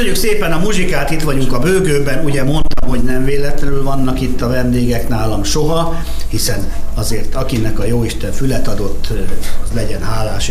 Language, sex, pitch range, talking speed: Hungarian, male, 100-135 Hz, 165 wpm